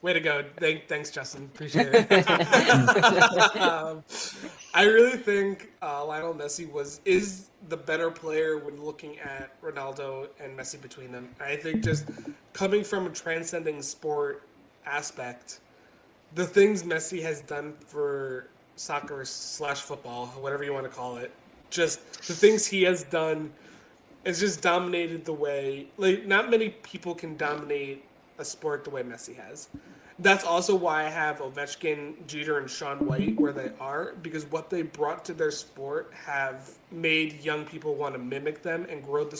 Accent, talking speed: American, 160 wpm